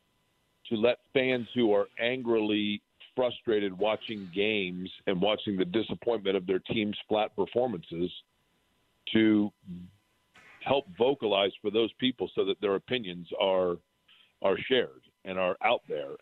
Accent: American